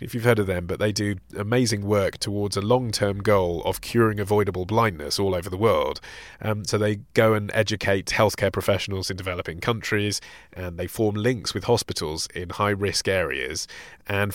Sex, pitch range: male, 95-125 Hz